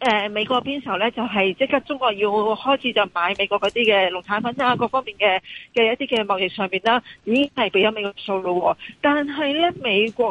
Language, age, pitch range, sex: Chinese, 40-59, 200-255 Hz, female